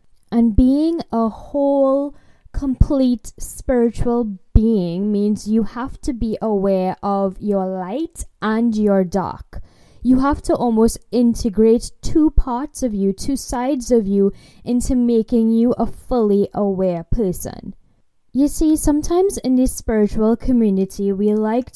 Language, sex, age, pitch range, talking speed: English, female, 10-29, 210-255 Hz, 130 wpm